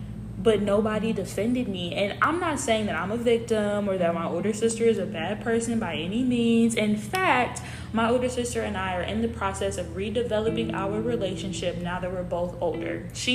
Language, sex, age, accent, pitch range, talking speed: English, female, 10-29, American, 180-230 Hz, 200 wpm